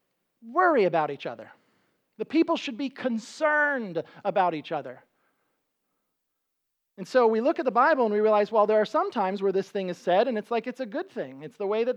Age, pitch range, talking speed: 40-59, 155-245 Hz, 215 wpm